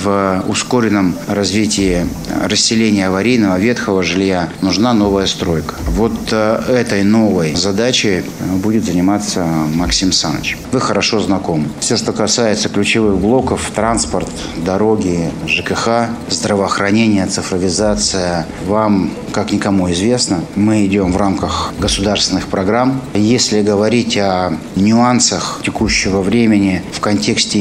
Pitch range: 90-110 Hz